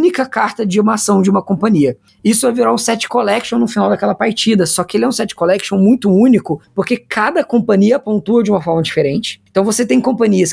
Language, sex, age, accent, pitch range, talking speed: Portuguese, female, 20-39, Brazilian, 185-235 Hz, 230 wpm